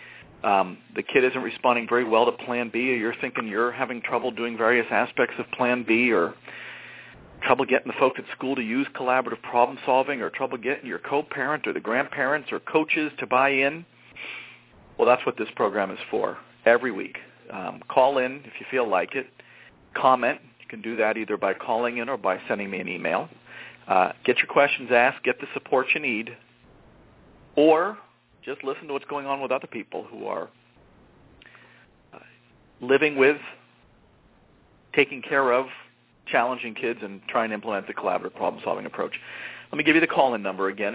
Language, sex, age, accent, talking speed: English, male, 40-59, American, 185 wpm